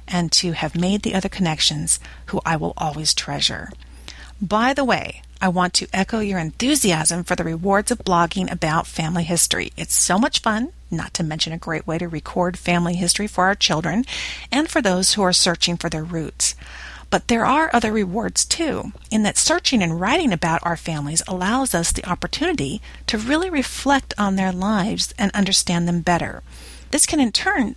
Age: 40-59